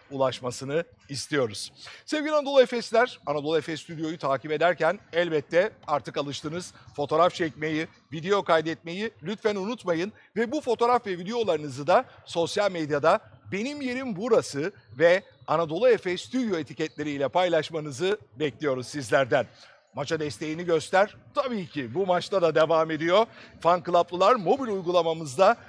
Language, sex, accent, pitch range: Turkish, male, native, 155-205 Hz